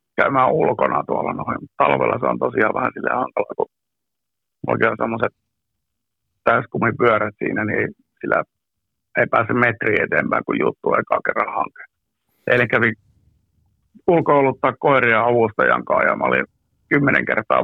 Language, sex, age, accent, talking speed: Finnish, male, 60-79, native, 130 wpm